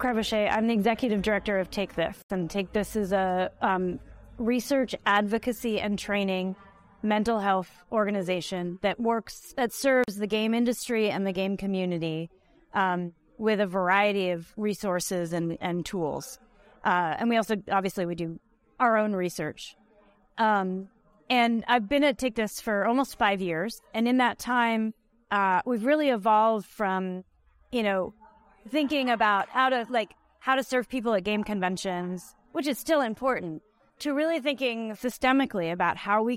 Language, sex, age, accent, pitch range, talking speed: English, female, 30-49, American, 190-235 Hz, 155 wpm